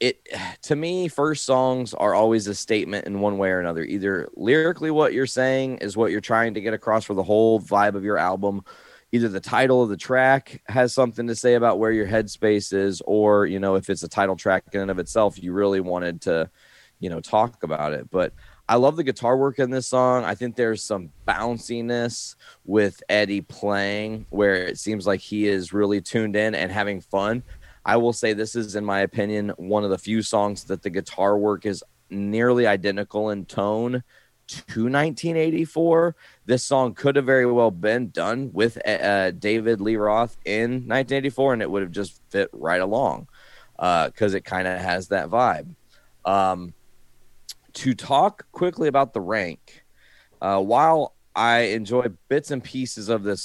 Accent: American